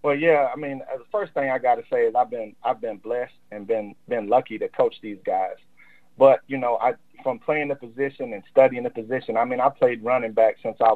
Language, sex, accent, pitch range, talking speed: English, male, American, 115-155 Hz, 250 wpm